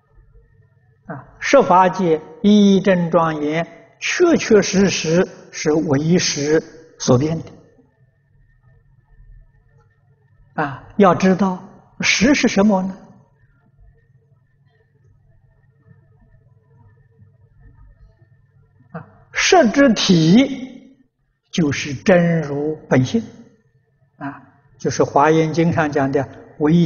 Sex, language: male, Chinese